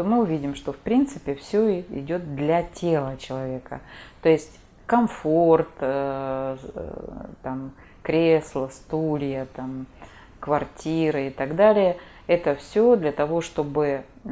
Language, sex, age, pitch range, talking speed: Russian, female, 30-49, 140-175 Hz, 115 wpm